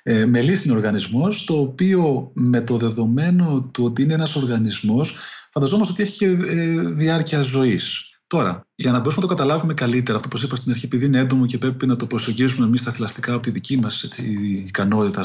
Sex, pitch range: male, 125-175 Hz